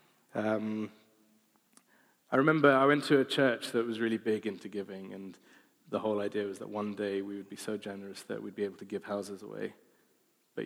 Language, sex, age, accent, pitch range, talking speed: English, male, 20-39, British, 100-115 Hz, 205 wpm